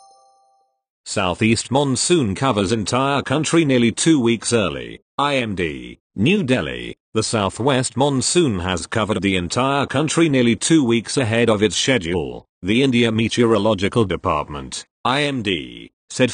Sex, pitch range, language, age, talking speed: male, 100-130 Hz, English, 40-59, 120 wpm